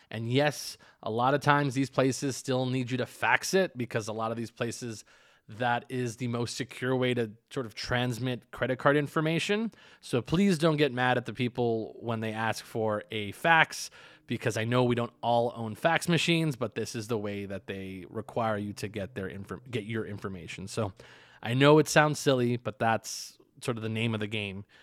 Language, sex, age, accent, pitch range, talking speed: English, male, 20-39, American, 110-140 Hz, 210 wpm